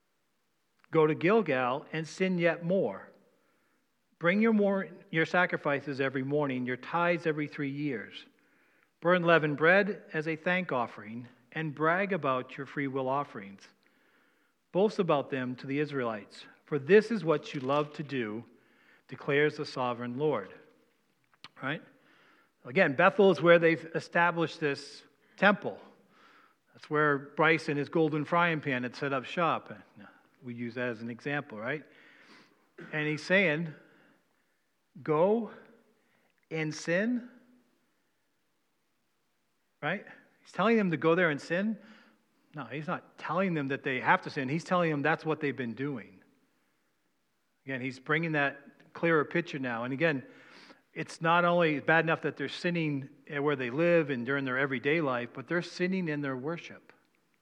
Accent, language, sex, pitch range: American, English, male, 140-175 Hz